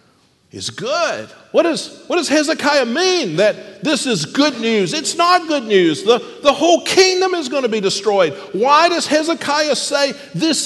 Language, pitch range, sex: English, 225-305 Hz, male